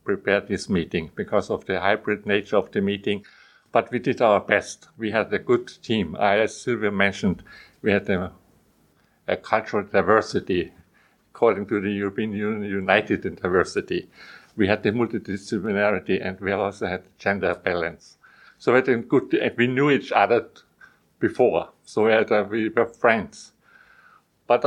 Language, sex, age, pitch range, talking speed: English, male, 60-79, 105-130 Hz, 165 wpm